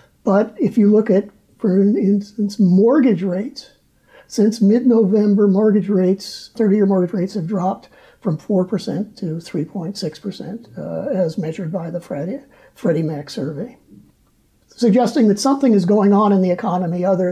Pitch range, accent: 185-230 Hz, American